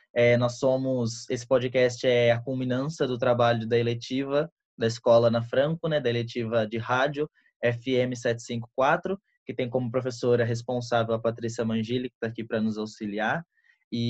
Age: 20-39